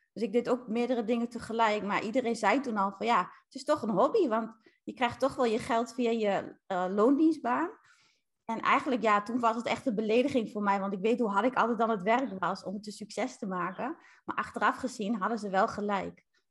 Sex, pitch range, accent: female, 215-250 Hz, Dutch